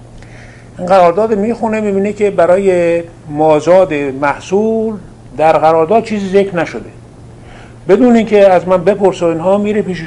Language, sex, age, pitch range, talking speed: Persian, male, 50-69, 140-185 Hz, 120 wpm